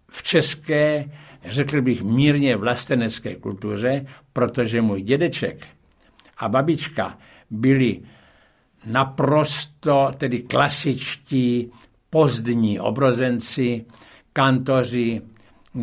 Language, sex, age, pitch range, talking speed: Czech, male, 60-79, 115-150 Hz, 70 wpm